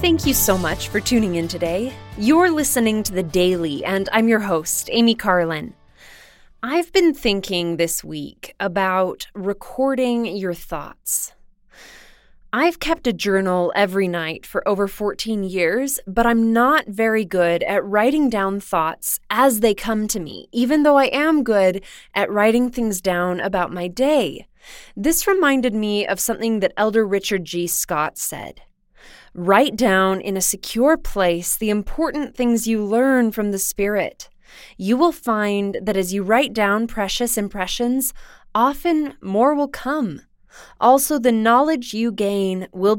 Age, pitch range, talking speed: 20-39, 190-250 Hz, 150 wpm